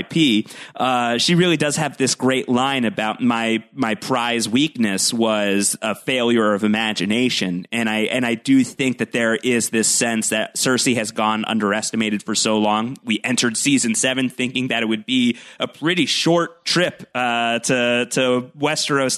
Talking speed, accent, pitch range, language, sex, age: 170 wpm, American, 110-135 Hz, English, male, 30-49